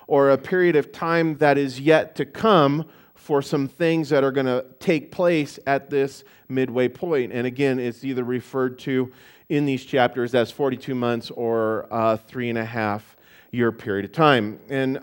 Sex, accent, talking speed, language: male, American, 190 wpm, English